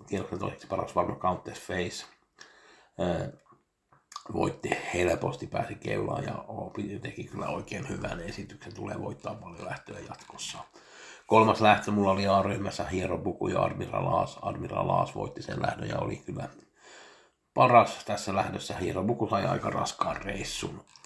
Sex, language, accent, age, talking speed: male, Finnish, native, 60-79, 125 wpm